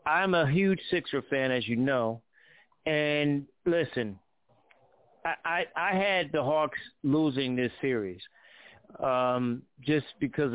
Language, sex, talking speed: English, male, 125 wpm